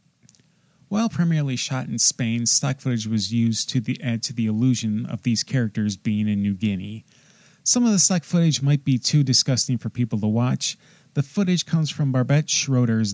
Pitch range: 115-160 Hz